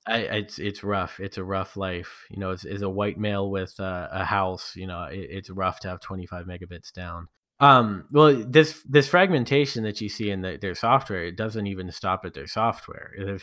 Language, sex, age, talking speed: English, male, 20-39, 220 wpm